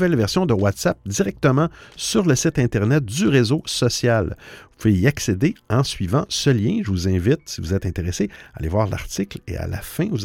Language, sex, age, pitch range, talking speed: French, male, 50-69, 95-140 Hz, 205 wpm